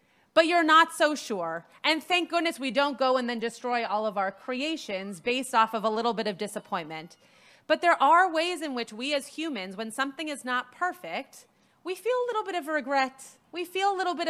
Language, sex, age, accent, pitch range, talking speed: English, female, 30-49, American, 215-295 Hz, 220 wpm